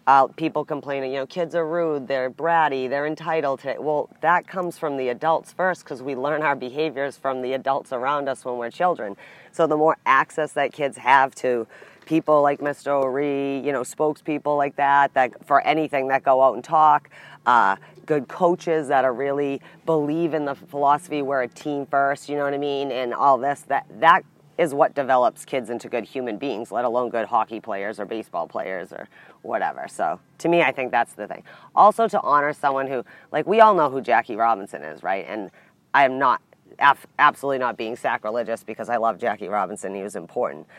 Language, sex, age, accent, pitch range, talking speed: English, female, 30-49, American, 125-155 Hz, 205 wpm